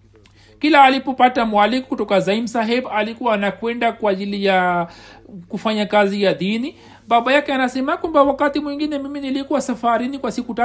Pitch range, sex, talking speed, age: 200-255 Hz, male, 145 wpm, 60-79